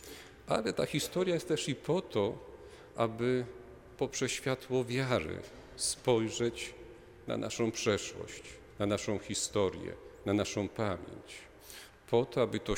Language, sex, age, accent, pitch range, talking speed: Polish, male, 50-69, native, 100-125 Hz, 120 wpm